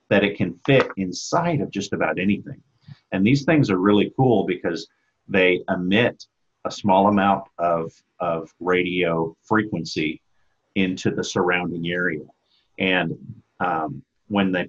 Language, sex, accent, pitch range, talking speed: English, male, American, 90-110 Hz, 135 wpm